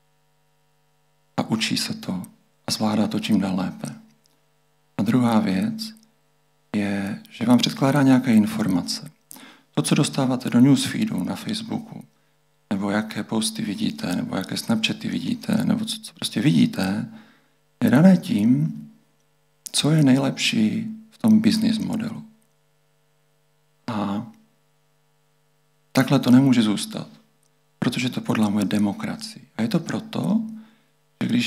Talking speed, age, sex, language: 120 wpm, 40-59, male, Czech